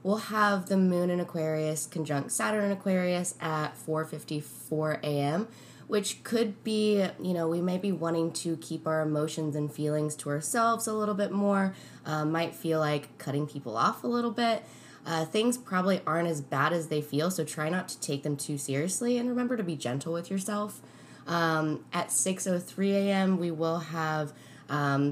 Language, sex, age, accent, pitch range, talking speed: English, female, 20-39, American, 150-190 Hz, 180 wpm